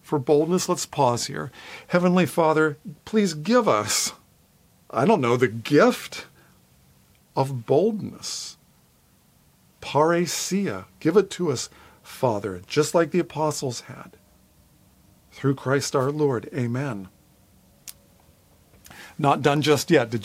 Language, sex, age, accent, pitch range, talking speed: English, male, 50-69, American, 120-160 Hz, 115 wpm